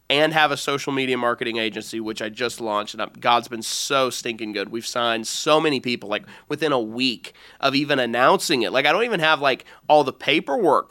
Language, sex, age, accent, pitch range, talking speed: English, male, 30-49, American, 125-160 Hz, 215 wpm